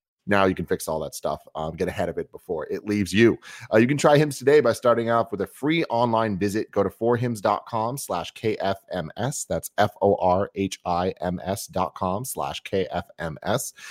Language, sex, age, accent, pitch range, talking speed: English, male, 30-49, American, 95-115 Hz, 155 wpm